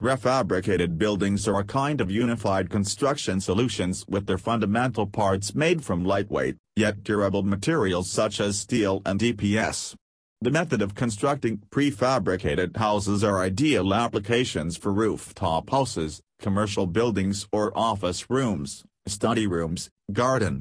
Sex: male